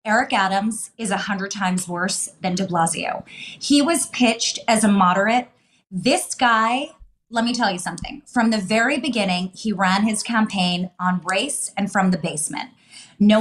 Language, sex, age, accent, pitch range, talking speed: English, female, 30-49, American, 190-240 Hz, 165 wpm